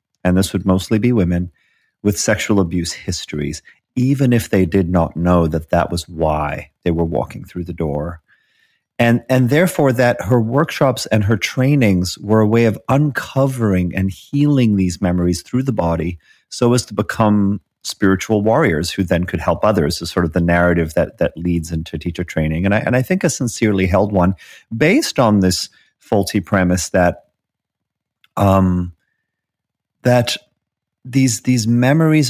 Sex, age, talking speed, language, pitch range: male, 40-59, 165 wpm, English, 90-120 Hz